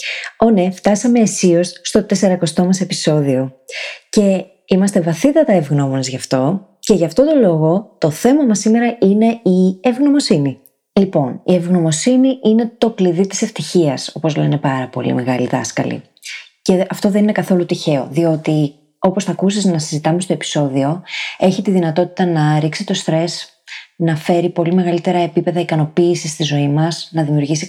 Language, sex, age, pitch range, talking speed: Greek, female, 20-39, 155-195 Hz, 155 wpm